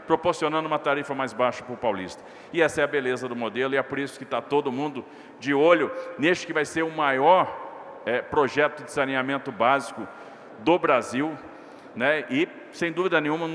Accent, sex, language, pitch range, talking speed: Brazilian, male, Portuguese, 140-165 Hz, 195 wpm